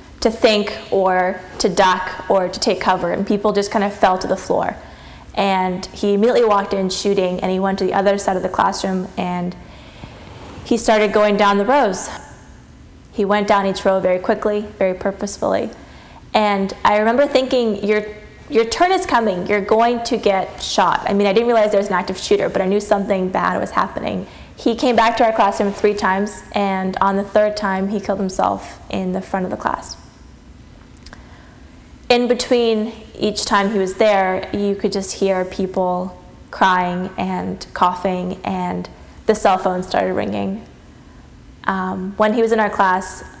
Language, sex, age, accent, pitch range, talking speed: English, female, 20-39, American, 185-210 Hz, 180 wpm